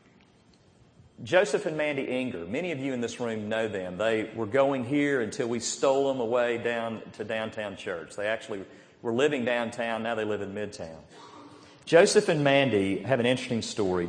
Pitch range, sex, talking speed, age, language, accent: 110-140 Hz, male, 180 wpm, 40-59, English, American